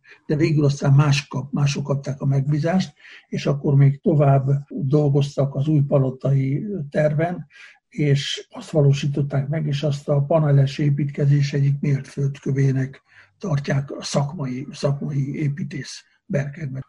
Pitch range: 140-155 Hz